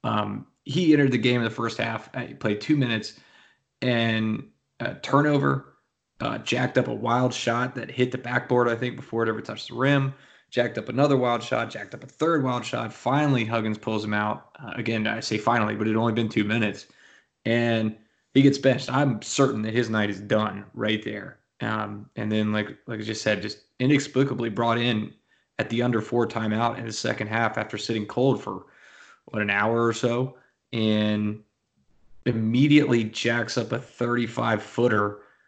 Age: 20-39